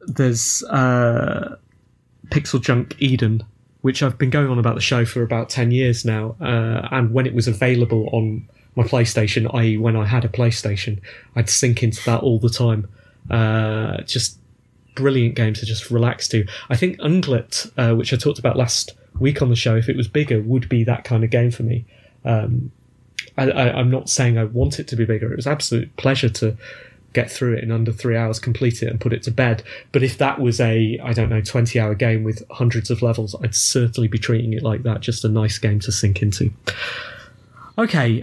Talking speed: 210 wpm